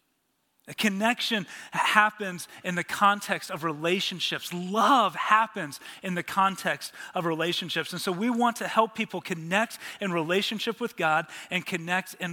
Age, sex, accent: 30-49, male, American